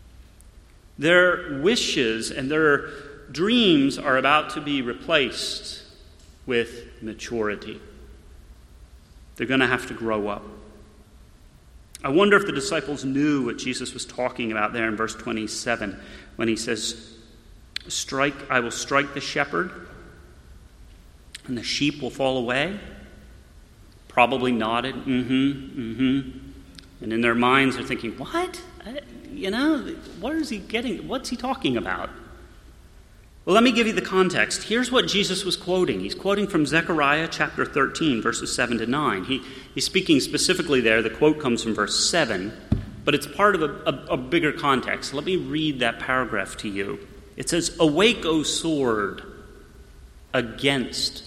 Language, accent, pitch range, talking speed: English, American, 105-155 Hz, 145 wpm